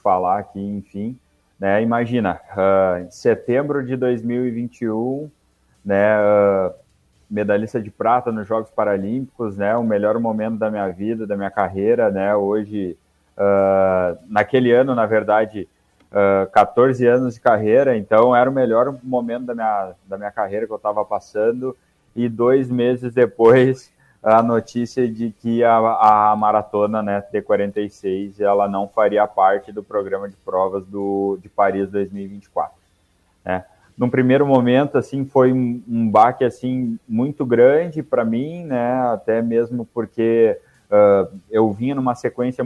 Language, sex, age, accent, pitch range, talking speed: Portuguese, male, 20-39, Brazilian, 100-125 Hz, 135 wpm